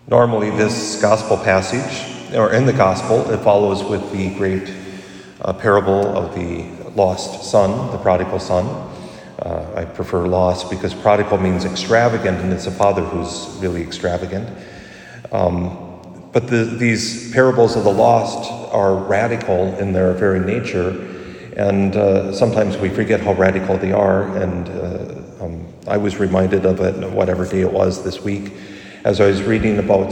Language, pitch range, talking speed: English, 95-105 Hz, 155 wpm